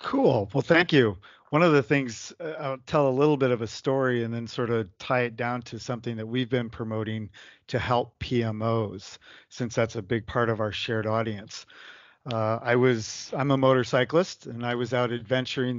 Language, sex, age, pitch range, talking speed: English, male, 50-69, 110-130 Hz, 210 wpm